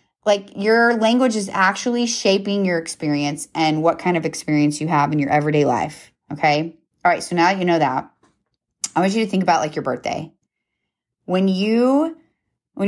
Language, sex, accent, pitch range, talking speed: English, female, American, 150-200 Hz, 180 wpm